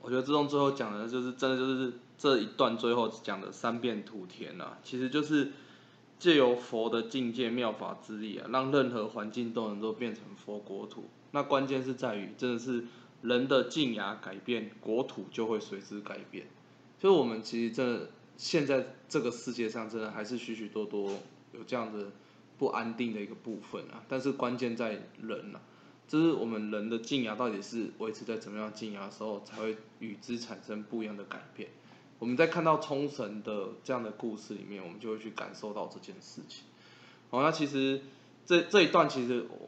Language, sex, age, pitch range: Chinese, male, 20-39, 110-130 Hz